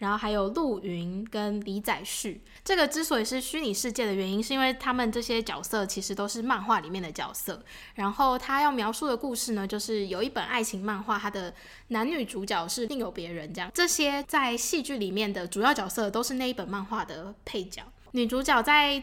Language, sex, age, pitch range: Chinese, female, 20-39, 205-260 Hz